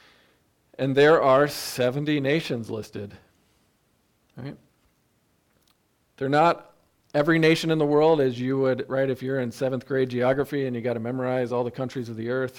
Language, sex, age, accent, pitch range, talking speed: English, male, 40-59, American, 115-135 Hz, 165 wpm